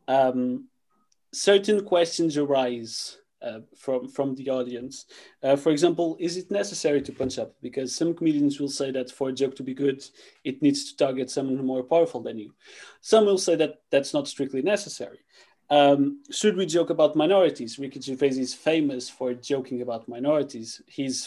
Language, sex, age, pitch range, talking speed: English, male, 30-49, 130-150 Hz, 175 wpm